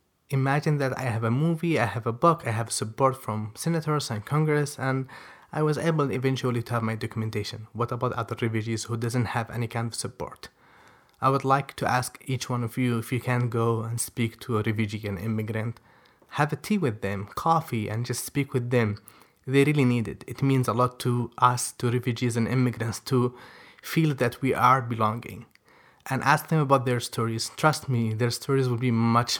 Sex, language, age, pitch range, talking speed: male, English, 20-39, 115-135 Hz, 205 wpm